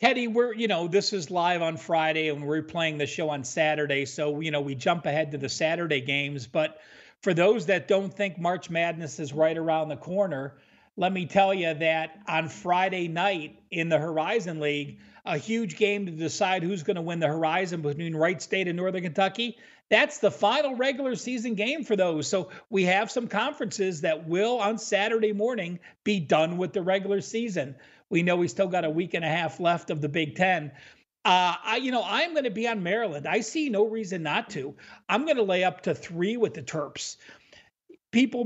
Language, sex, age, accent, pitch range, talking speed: English, male, 50-69, American, 160-210 Hz, 205 wpm